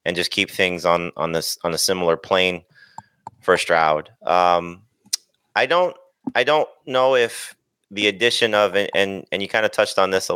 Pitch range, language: 90-105 Hz, English